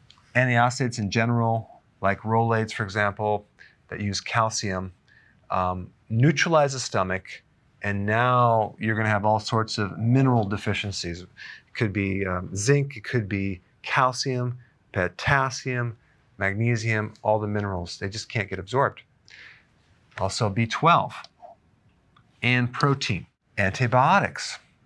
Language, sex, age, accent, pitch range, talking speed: English, male, 40-59, American, 100-125 Hz, 115 wpm